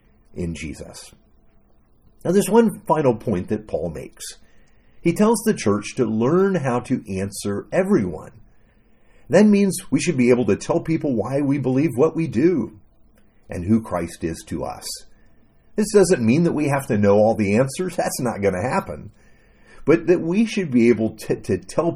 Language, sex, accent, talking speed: English, male, American, 180 wpm